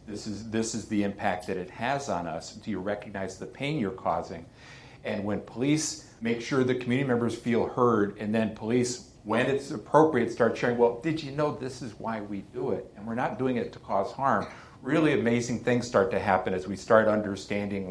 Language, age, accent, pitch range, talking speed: English, 50-69, American, 95-115 Hz, 215 wpm